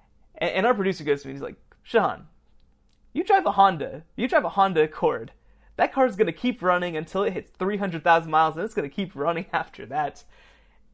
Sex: male